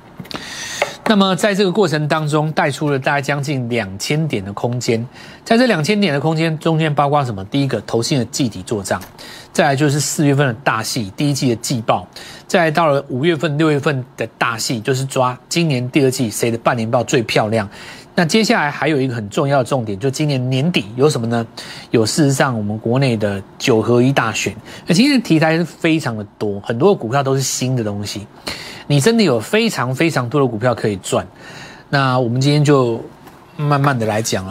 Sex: male